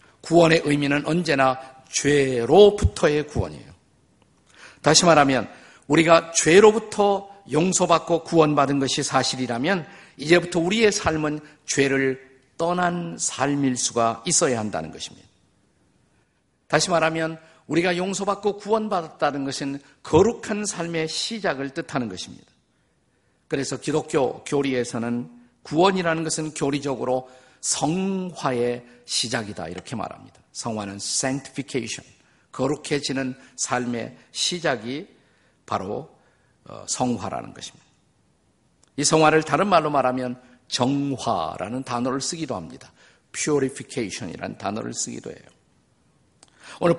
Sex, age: male, 50-69